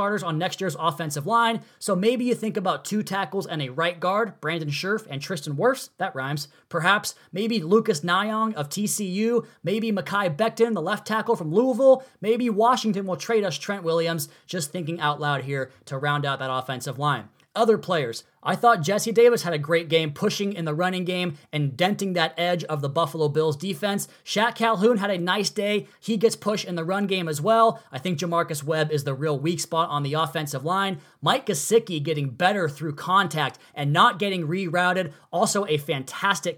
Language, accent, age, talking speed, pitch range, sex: English, American, 20-39, 200 wpm, 155-200 Hz, male